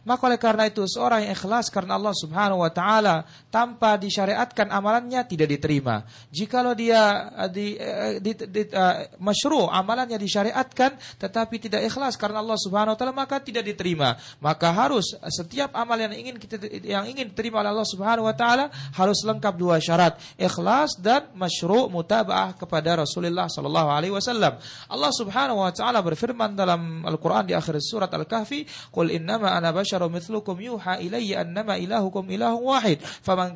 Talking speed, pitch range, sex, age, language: 155 wpm, 160-225 Hz, male, 30-49, Malay